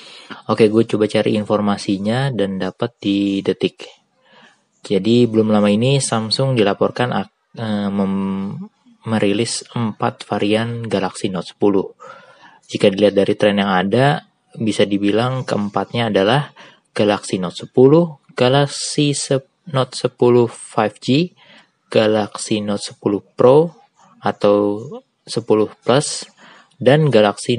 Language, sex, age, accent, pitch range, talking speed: Indonesian, male, 20-39, native, 100-125 Hz, 110 wpm